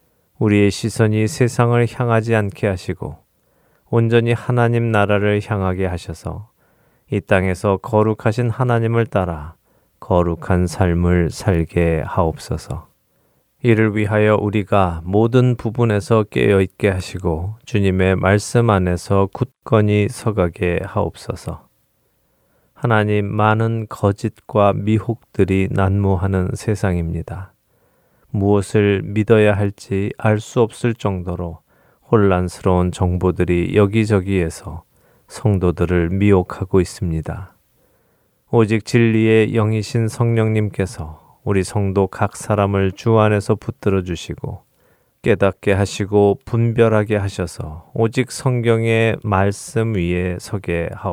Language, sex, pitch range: Japanese, male, 95-115 Hz